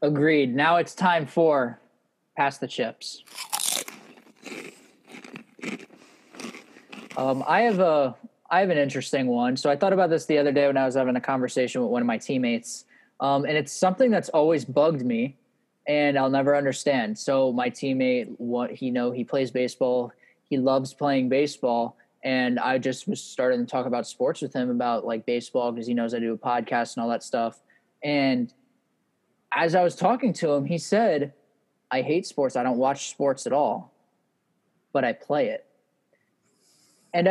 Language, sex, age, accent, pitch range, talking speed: English, male, 20-39, American, 130-185 Hz, 175 wpm